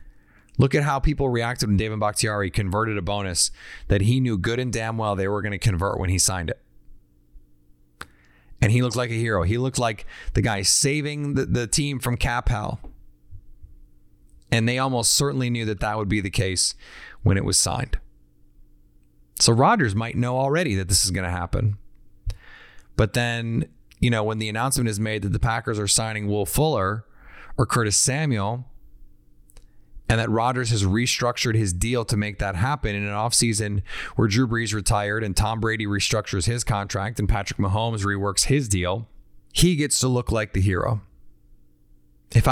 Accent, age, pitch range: American, 30-49, 90-125 Hz